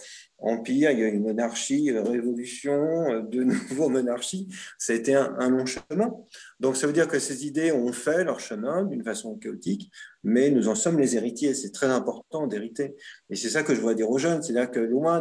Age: 40-59